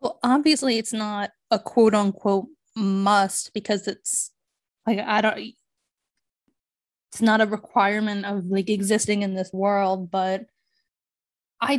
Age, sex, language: 10-29, female, English